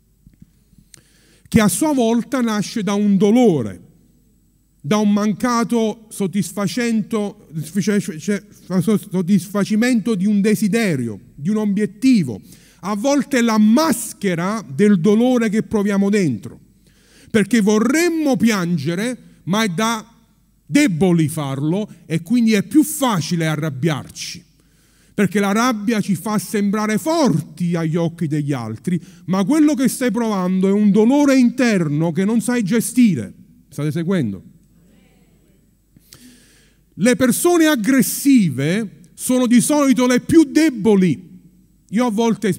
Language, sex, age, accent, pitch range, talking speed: Italian, male, 40-59, native, 180-245 Hz, 115 wpm